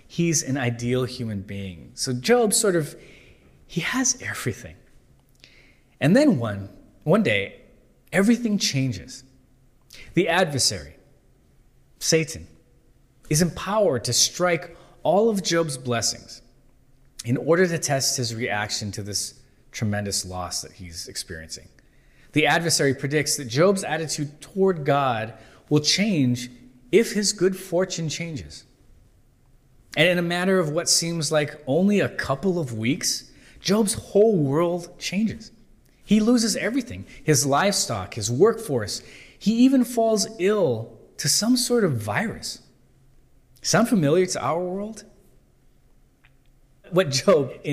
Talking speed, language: 125 wpm, English